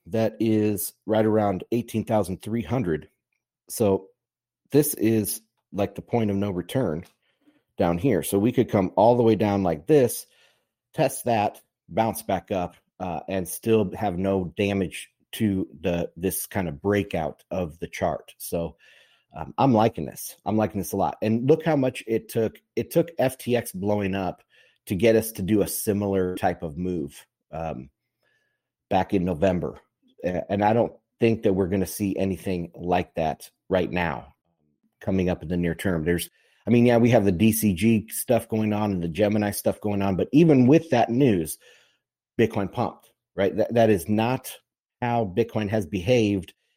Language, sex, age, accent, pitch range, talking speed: English, male, 40-59, American, 95-115 Hz, 170 wpm